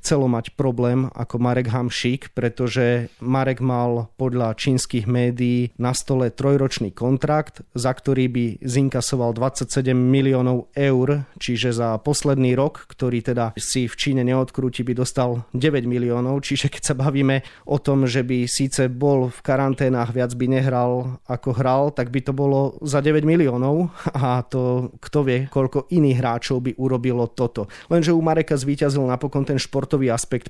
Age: 30-49